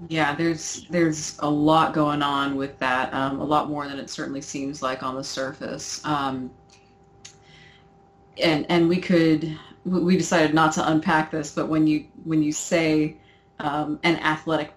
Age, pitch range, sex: 30-49, 145-175 Hz, female